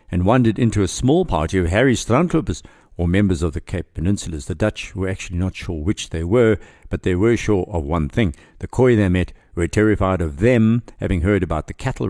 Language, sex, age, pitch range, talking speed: English, male, 60-79, 90-115 Hz, 220 wpm